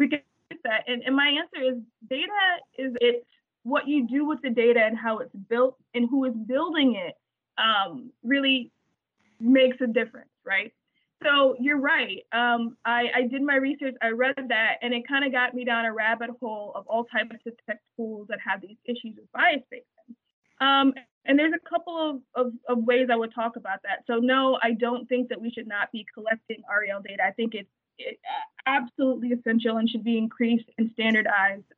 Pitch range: 225-270 Hz